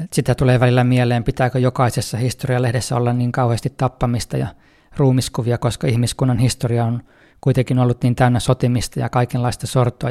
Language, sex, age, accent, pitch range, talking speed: Finnish, male, 20-39, native, 120-135 Hz, 150 wpm